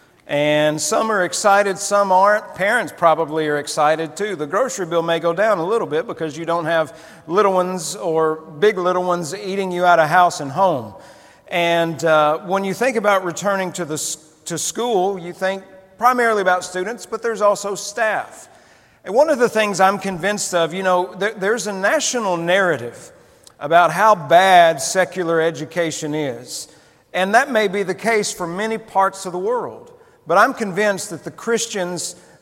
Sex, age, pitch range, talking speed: male, 40-59, 160-195 Hz, 180 wpm